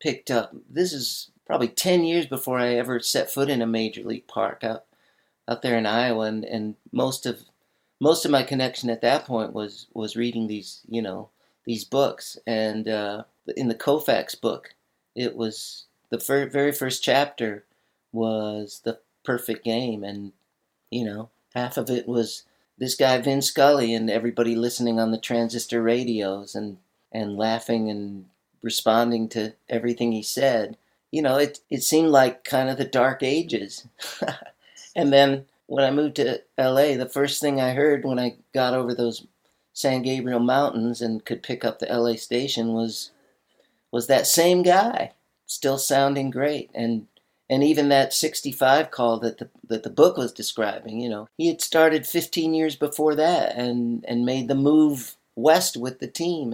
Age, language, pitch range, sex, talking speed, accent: 50-69, English, 115-140 Hz, male, 170 wpm, American